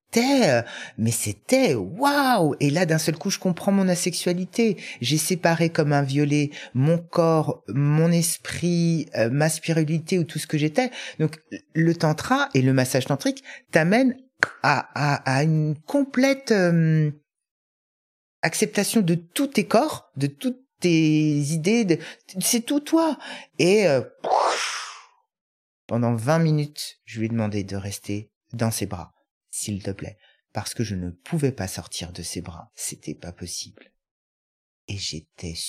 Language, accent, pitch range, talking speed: French, French, 105-170 Hz, 145 wpm